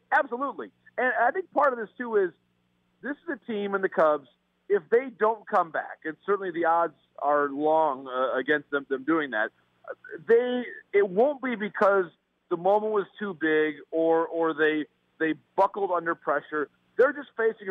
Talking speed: 180 wpm